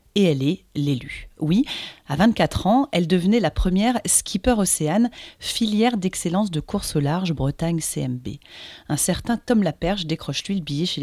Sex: female